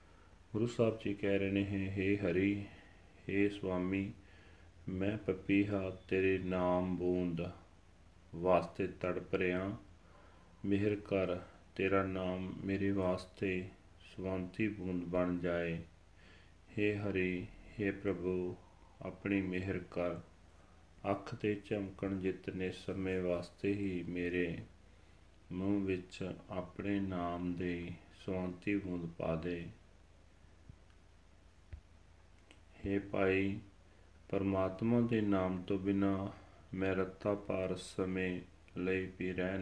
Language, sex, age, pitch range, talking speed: Punjabi, male, 40-59, 85-100 Hz, 100 wpm